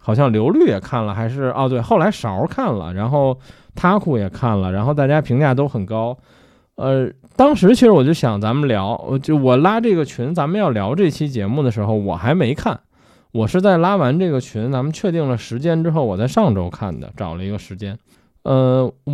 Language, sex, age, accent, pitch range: Chinese, male, 20-39, native, 110-160 Hz